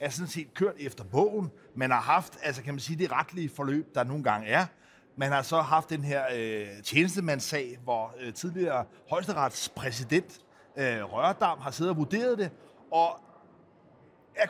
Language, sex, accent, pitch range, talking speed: Danish, male, native, 140-195 Hz, 155 wpm